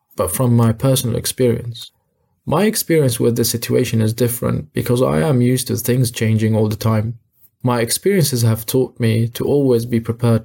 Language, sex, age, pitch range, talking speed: English, male, 20-39, 115-135 Hz, 170 wpm